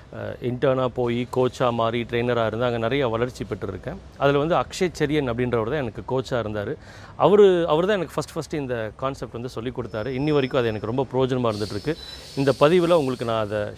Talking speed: 185 wpm